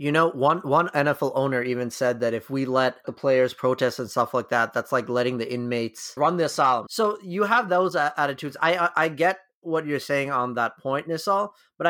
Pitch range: 130-160 Hz